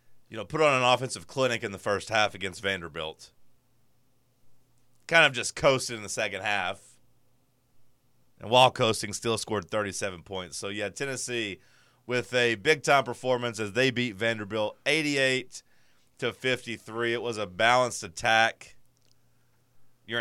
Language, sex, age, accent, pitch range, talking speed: English, male, 30-49, American, 110-130 Hz, 140 wpm